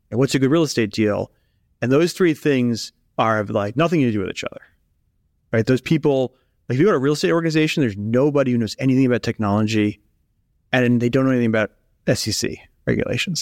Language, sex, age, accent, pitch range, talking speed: English, male, 30-49, American, 110-140 Hz, 205 wpm